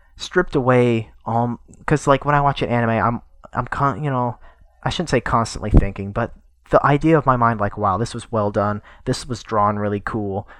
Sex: male